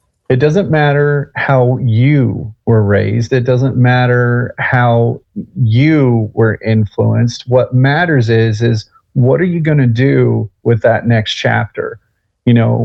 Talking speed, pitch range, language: 140 wpm, 115-135 Hz, English